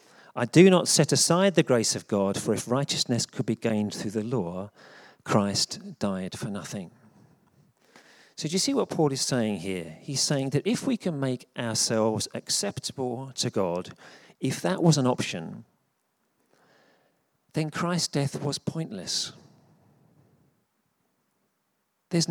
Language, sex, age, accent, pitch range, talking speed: English, male, 40-59, British, 110-155 Hz, 145 wpm